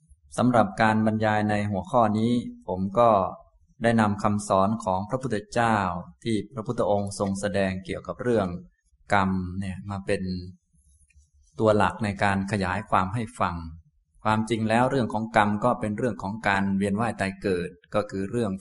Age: 20-39